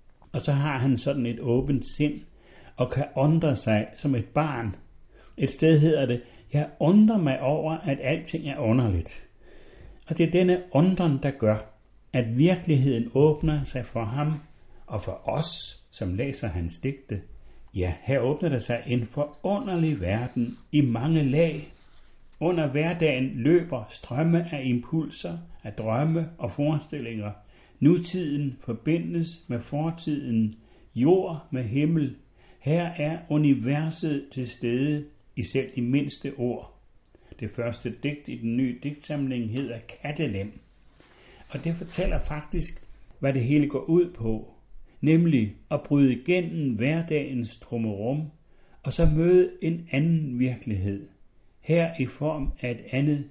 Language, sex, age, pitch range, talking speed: Danish, male, 60-79, 120-155 Hz, 135 wpm